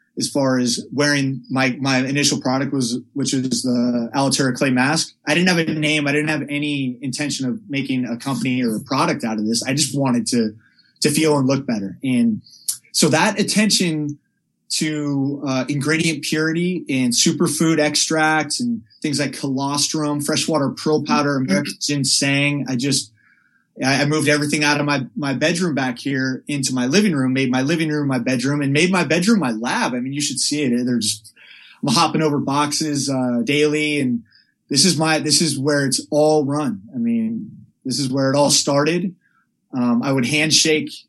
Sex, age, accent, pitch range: male, 20-39, American, 130-150 Hz